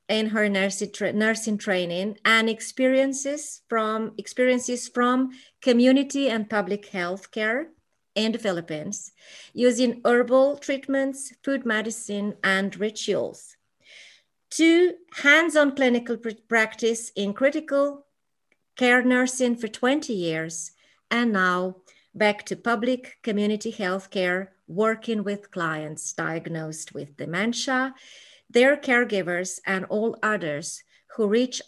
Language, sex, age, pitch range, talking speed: English, female, 30-49, 190-250 Hz, 110 wpm